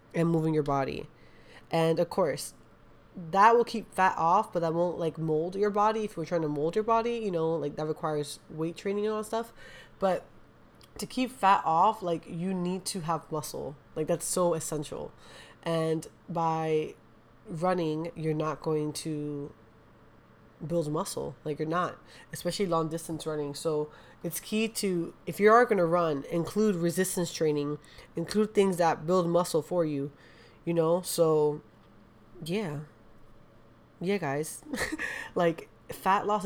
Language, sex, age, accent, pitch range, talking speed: English, female, 20-39, American, 155-195 Hz, 160 wpm